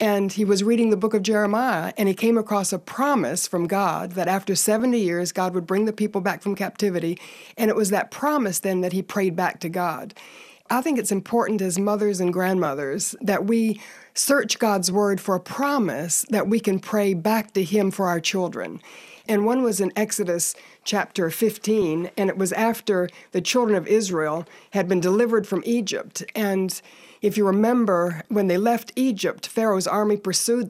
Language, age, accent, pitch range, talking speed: English, 60-79, American, 185-225 Hz, 190 wpm